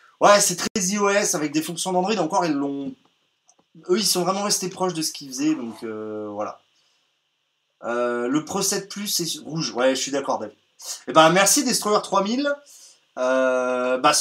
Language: French